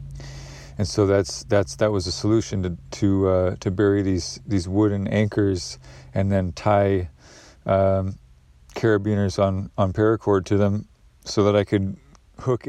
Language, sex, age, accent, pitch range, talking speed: English, male, 40-59, American, 100-110 Hz, 150 wpm